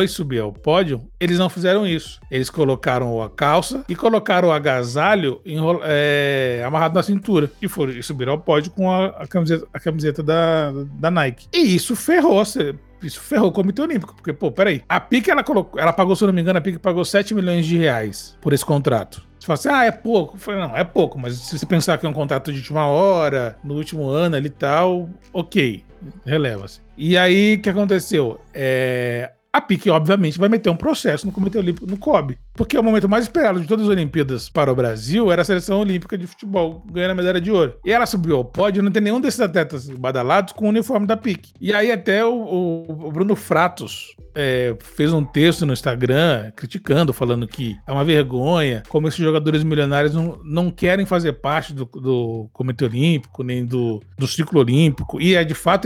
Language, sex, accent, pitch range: Portuguese, male, Brazilian, 135-190 Hz